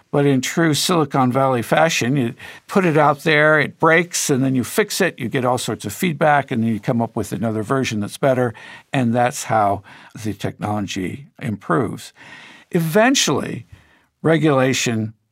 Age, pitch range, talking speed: 60-79, 115-150 Hz, 165 wpm